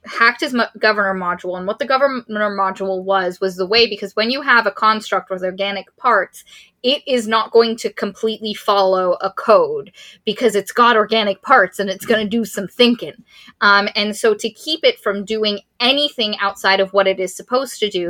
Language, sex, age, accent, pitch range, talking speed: English, female, 10-29, American, 195-235 Hz, 200 wpm